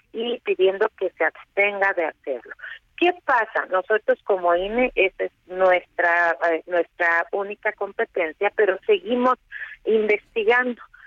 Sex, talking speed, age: female, 115 wpm, 40-59